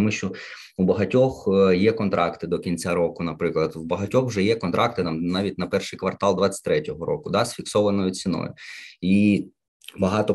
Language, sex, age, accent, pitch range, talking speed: Ukrainian, male, 20-39, native, 85-105 Hz, 160 wpm